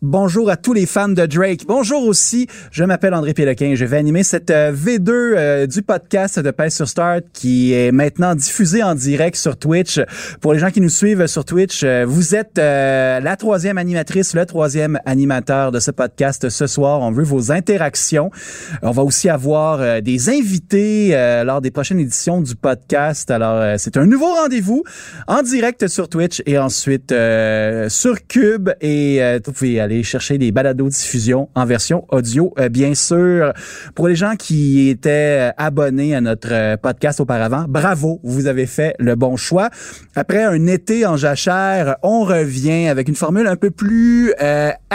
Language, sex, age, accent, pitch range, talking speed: French, male, 30-49, Canadian, 135-185 Hz, 180 wpm